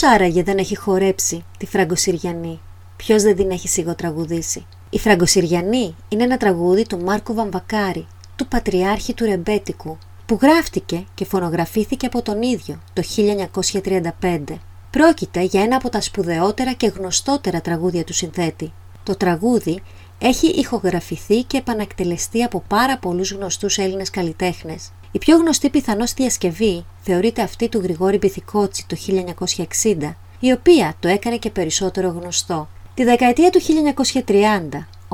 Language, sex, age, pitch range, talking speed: Greek, female, 30-49, 175-235 Hz, 135 wpm